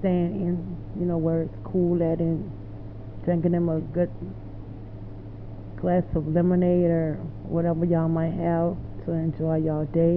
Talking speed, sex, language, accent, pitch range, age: 150 wpm, female, English, American, 105-175 Hz, 30-49